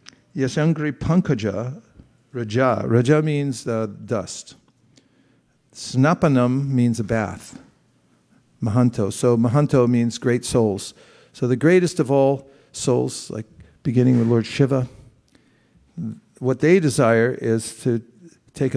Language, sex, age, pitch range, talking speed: English, male, 50-69, 110-135 Hz, 110 wpm